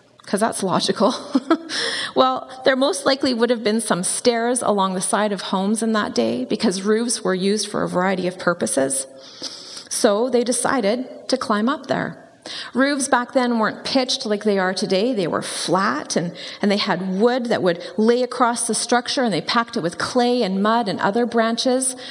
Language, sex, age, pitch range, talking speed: English, female, 30-49, 195-255 Hz, 190 wpm